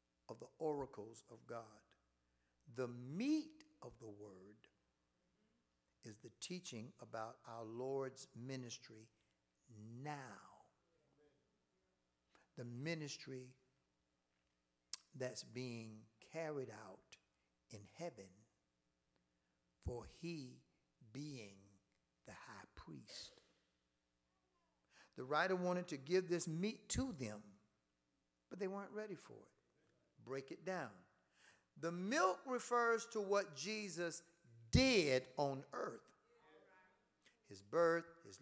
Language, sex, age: English, male, 60-79